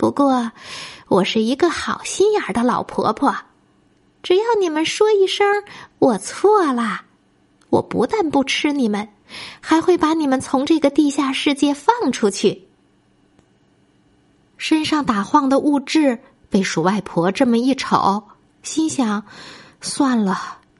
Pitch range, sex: 215-320 Hz, female